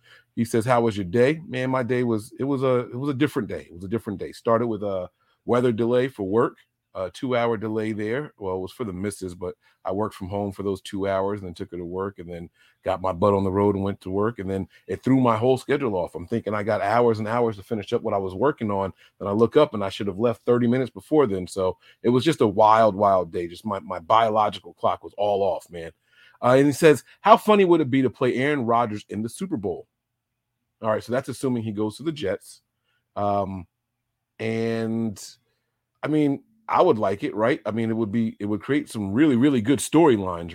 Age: 40-59